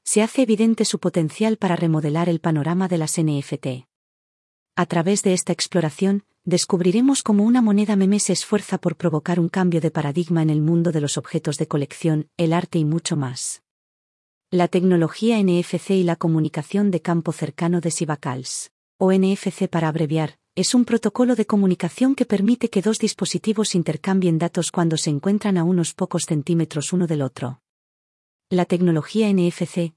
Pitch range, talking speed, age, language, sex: 160-200 Hz, 165 wpm, 40-59, Spanish, female